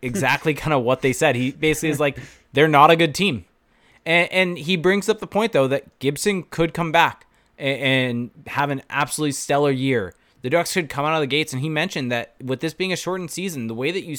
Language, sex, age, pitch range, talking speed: English, male, 20-39, 115-150 Hz, 235 wpm